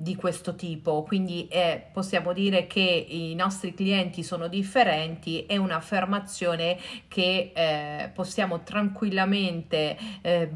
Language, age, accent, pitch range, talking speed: Italian, 40-59, native, 170-215 Hz, 110 wpm